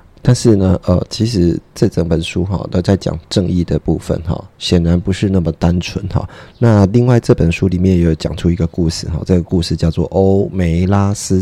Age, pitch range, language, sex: 20-39, 85-105 Hz, Chinese, male